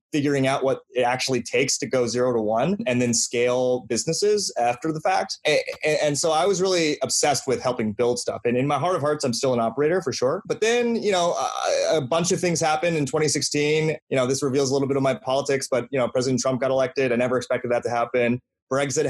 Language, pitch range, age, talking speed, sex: English, 120-145 Hz, 20-39, 245 wpm, male